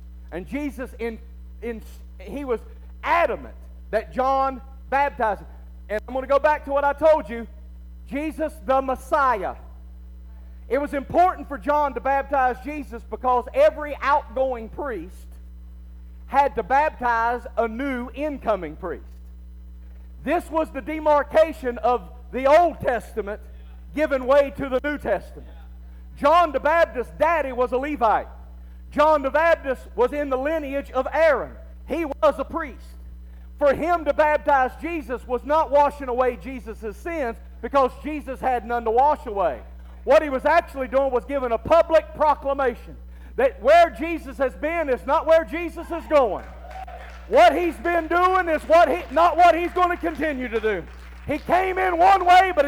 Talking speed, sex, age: 155 wpm, male, 50-69